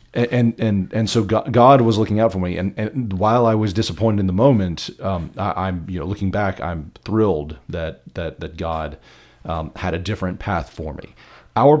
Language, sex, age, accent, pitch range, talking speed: English, male, 40-59, American, 85-110 Hz, 205 wpm